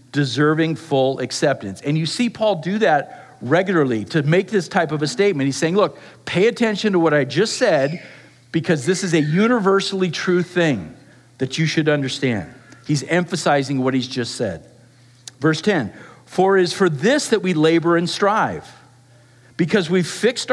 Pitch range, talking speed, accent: 140-180 Hz, 175 wpm, American